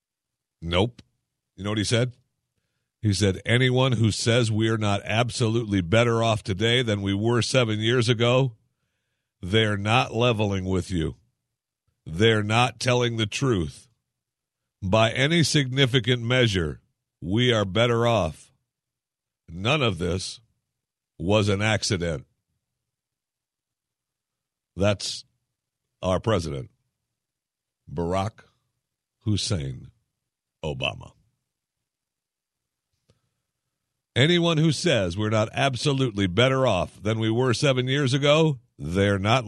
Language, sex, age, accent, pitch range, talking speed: English, male, 60-79, American, 100-130 Hz, 105 wpm